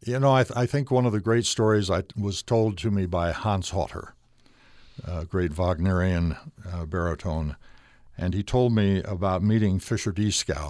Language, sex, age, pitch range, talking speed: English, male, 60-79, 85-110 Hz, 185 wpm